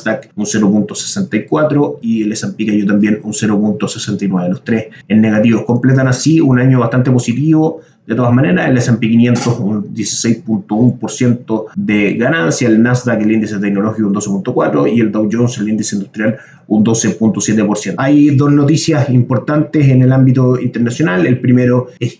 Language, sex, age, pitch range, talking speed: Spanish, male, 30-49, 110-130 Hz, 150 wpm